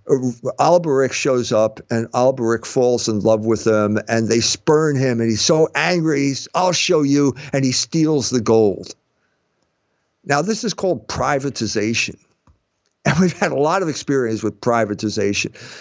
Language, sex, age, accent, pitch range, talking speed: English, male, 50-69, American, 135-200 Hz, 155 wpm